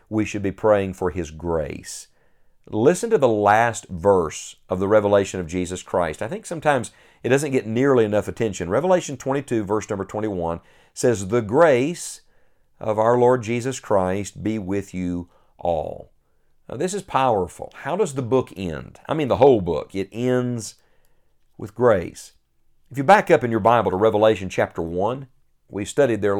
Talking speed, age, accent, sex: 175 wpm, 50-69, American, male